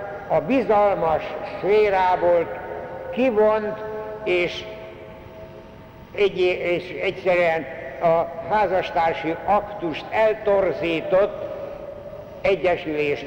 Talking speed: 60 wpm